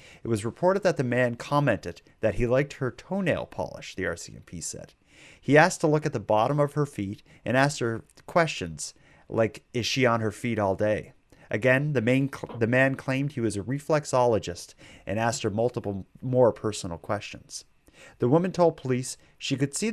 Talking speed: 185 wpm